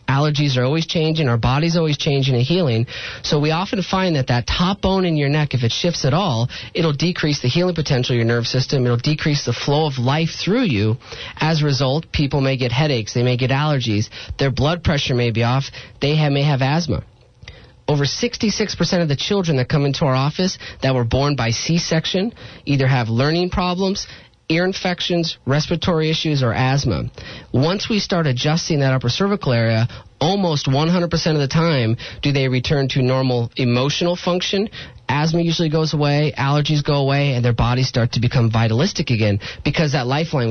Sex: male